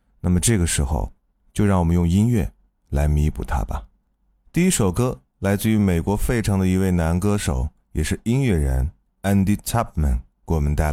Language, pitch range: Chinese, 75-105 Hz